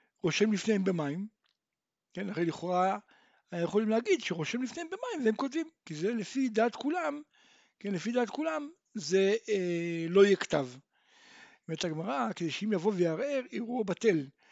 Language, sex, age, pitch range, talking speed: Hebrew, male, 60-79, 170-230 Hz, 110 wpm